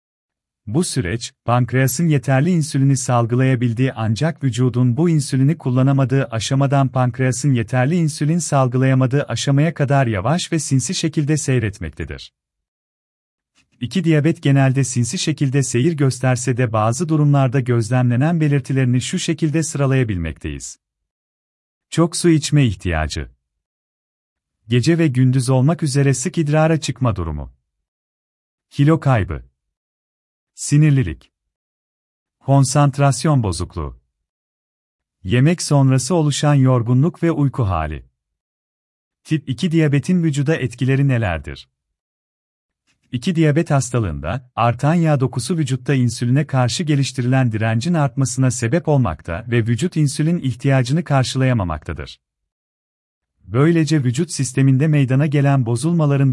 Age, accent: 40-59, native